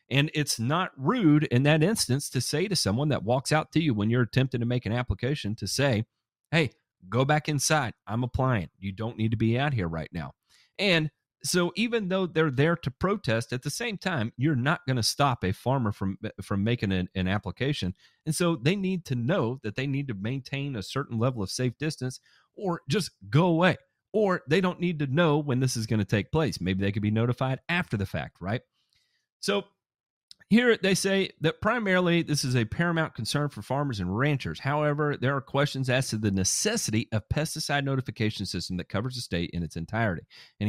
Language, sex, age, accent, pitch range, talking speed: English, male, 40-59, American, 105-150 Hz, 210 wpm